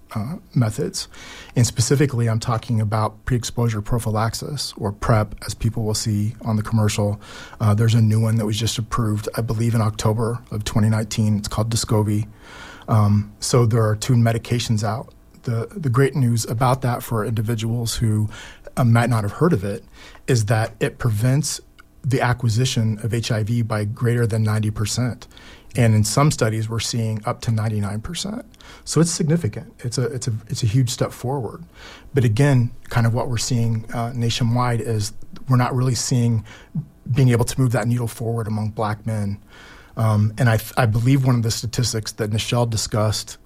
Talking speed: 175 wpm